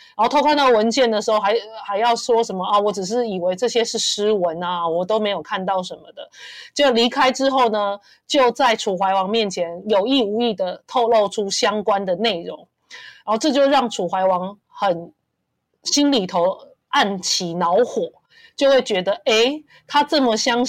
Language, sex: Chinese, female